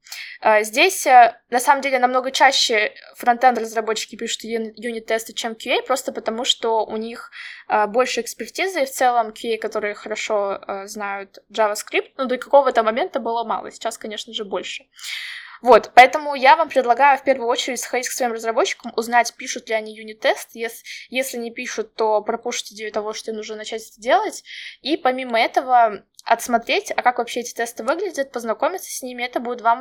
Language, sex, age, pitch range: Russian, female, 10-29, 225-265 Hz